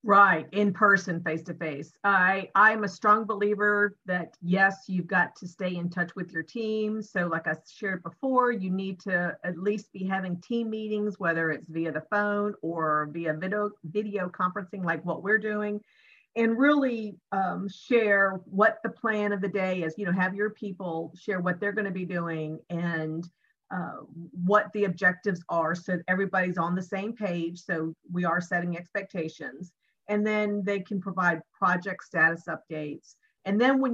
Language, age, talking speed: English, 50-69, 175 wpm